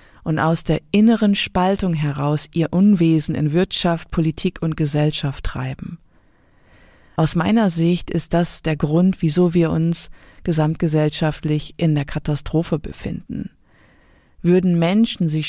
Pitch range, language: 150-175 Hz, German